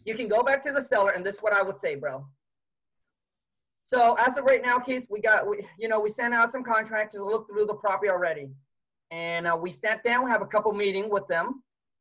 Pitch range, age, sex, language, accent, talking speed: 205-255 Hz, 30-49, male, English, American, 245 wpm